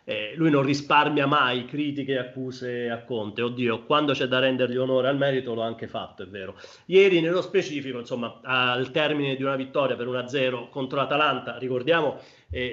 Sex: male